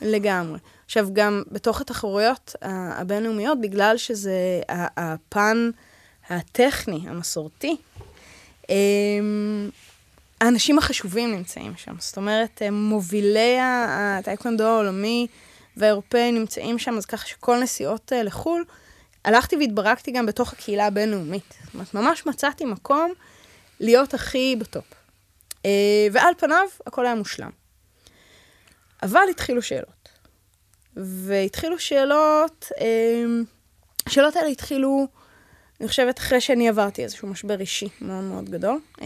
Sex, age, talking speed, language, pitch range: female, 20-39, 100 wpm, Hebrew, 195-250 Hz